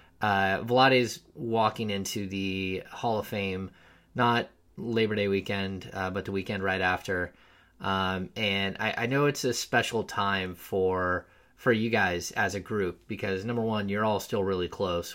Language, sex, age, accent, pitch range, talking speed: English, male, 30-49, American, 90-110 Hz, 170 wpm